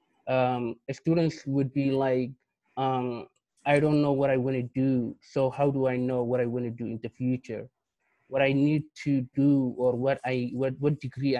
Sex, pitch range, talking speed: male, 120-135 Hz, 200 wpm